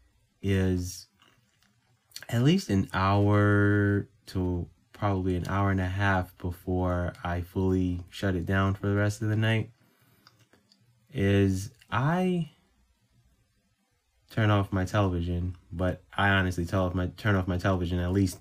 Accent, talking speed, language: American, 135 wpm, English